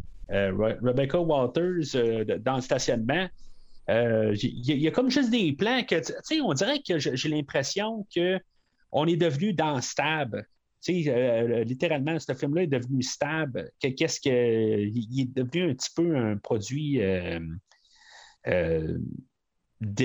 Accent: Canadian